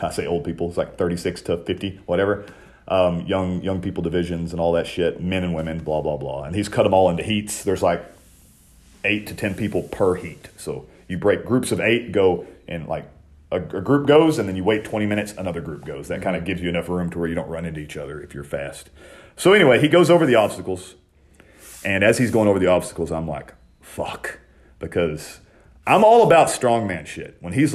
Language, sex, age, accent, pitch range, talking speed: English, male, 40-59, American, 85-110 Hz, 225 wpm